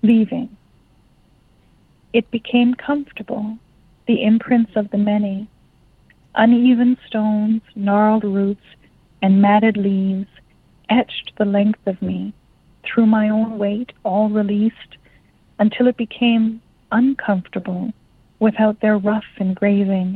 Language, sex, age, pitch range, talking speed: English, female, 40-59, 195-230 Hz, 105 wpm